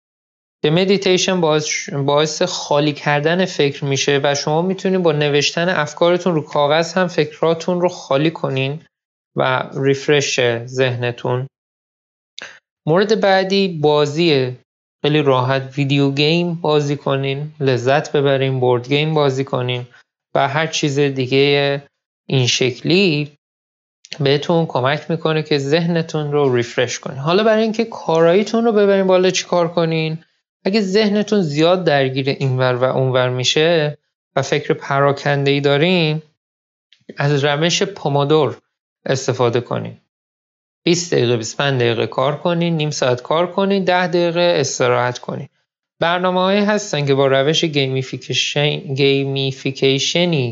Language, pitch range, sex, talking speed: Persian, 135-175 Hz, male, 120 wpm